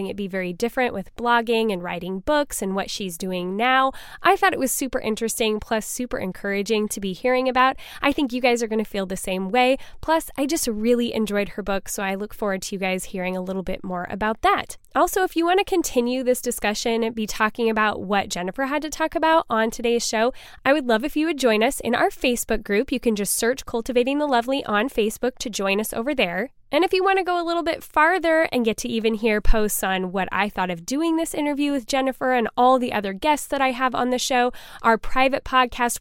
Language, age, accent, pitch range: English, 10-29, American, 215-280 Hz